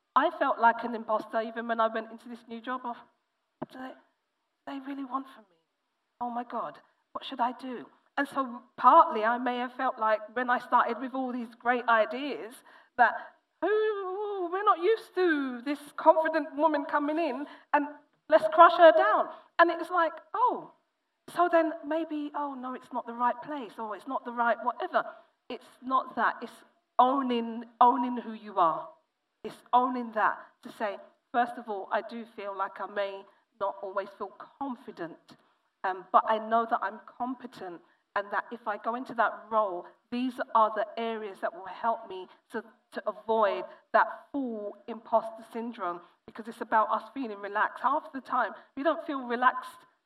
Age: 40-59